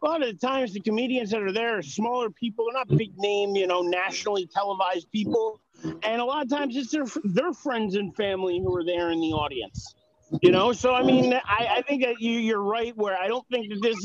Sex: male